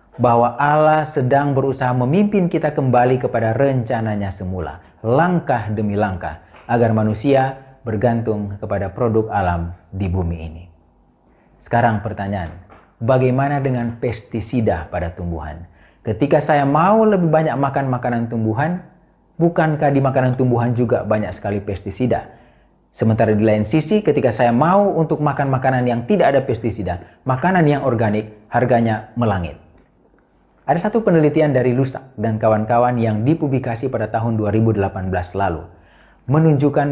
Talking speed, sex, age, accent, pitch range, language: 125 wpm, male, 40-59, native, 105-145 Hz, Indonesian